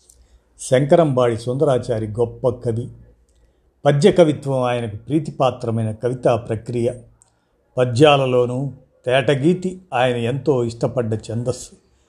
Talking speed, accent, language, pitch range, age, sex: 80 wpm, native, Telugu, 115-150 Hz, 50-69, male